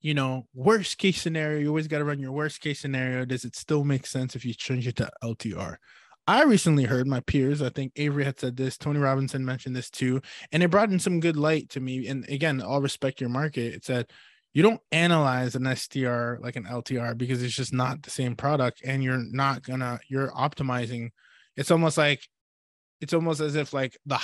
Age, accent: 20-39, American